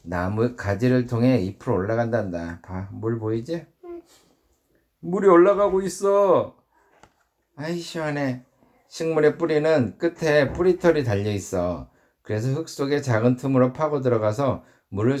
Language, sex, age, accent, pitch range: Korean, male, 50-69, native, 110-155 Hz